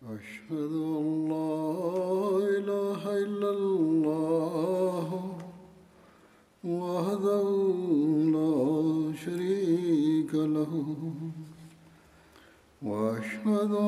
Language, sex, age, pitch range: Tamil, male, 60-79, 155-195 Hz